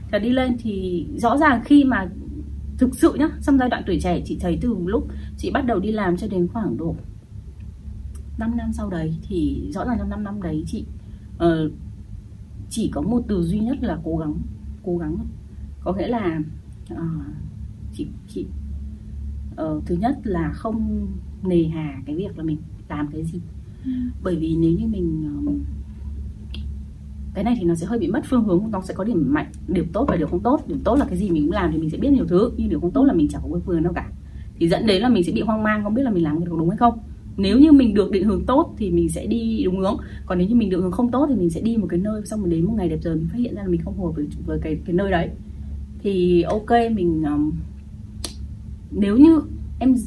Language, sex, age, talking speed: Vietnamese, female, 20-39, 240 wpm